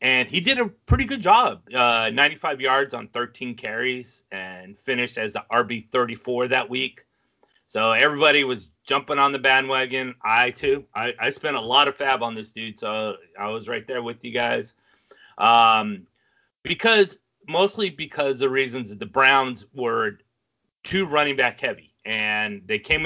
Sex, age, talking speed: male, 30-49, 165 wpm